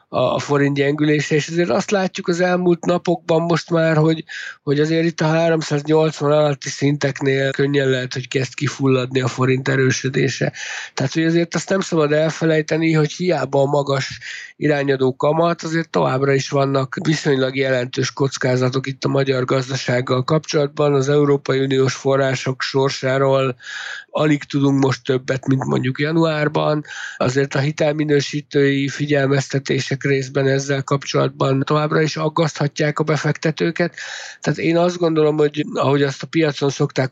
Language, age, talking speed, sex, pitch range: Hungarian, 60-79, 140 wpm, male, 130-150 Hz